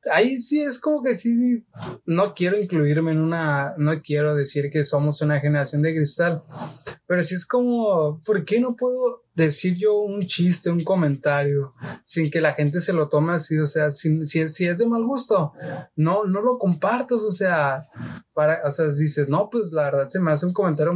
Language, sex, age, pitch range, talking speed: Spanish, male, 20-39, 145-195 Hz, 200 wpm